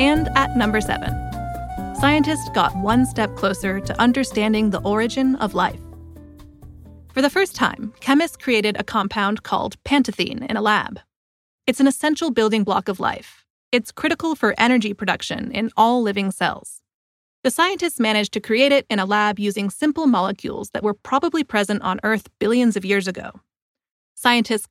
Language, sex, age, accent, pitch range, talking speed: English, female, 30-49, American, 205-260 Hz, 165 wpm